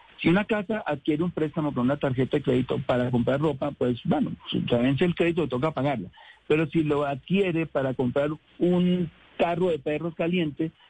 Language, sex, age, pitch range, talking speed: Spanish, male, 60-79, 145-185 Hz, 185 wpm